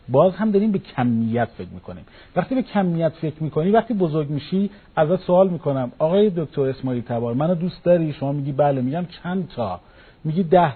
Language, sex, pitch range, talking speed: Persian, male, 135-200 Hz, 190 wpm